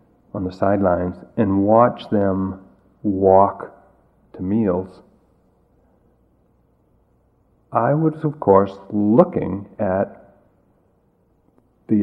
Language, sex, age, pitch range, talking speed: English, male, 50-69, 95-125 Hz, 80 wpm